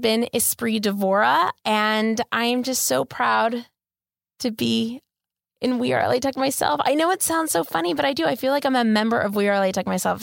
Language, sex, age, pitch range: English, female, 20-39, 195-250 Hz